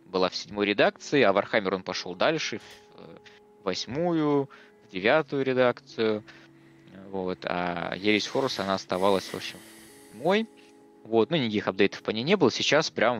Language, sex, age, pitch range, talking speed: Russian, male, 20-39, 90-110 Hz, 150 wpm